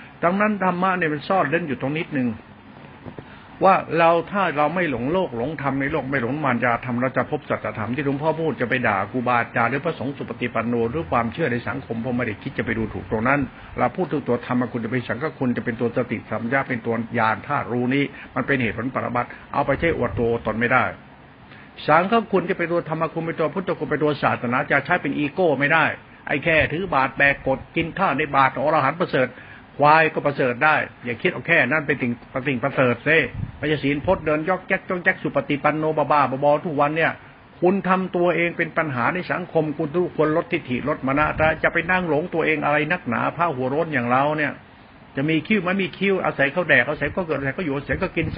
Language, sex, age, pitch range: Thai, male, 70-89, 125-165 Hz